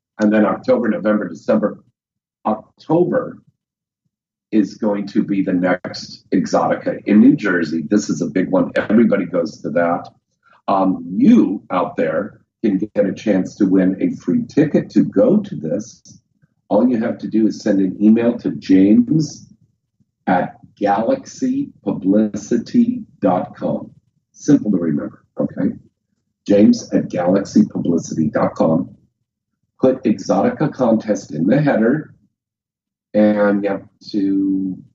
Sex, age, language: male, 50-69, English